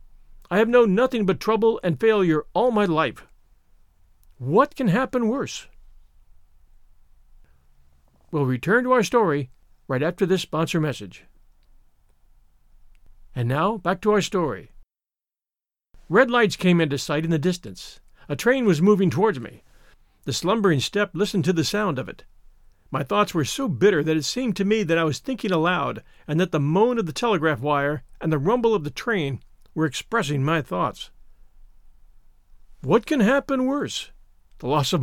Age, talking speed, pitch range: 50-69, 160 wpm, 130-210 Hz